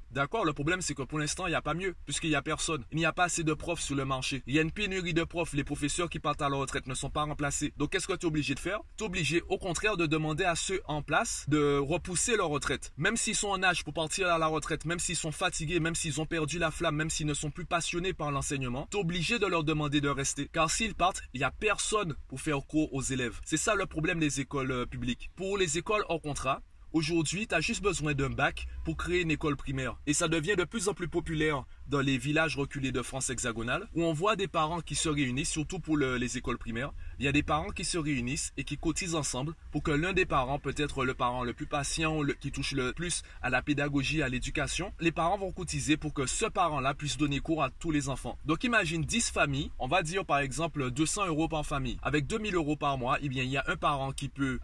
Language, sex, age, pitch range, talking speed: French, male, 20-39, 140-170 Hz, 260 wpm